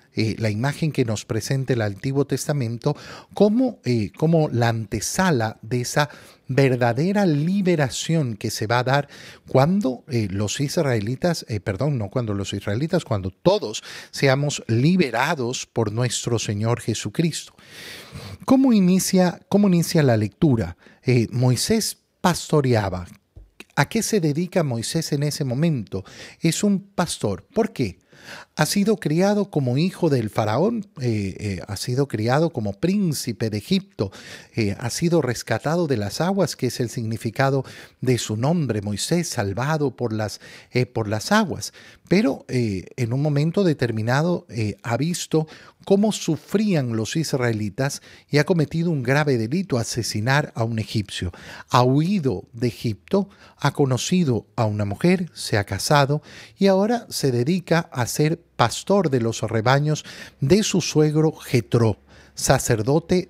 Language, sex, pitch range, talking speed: Spanish, male, 115-165 Hz, 140 wpm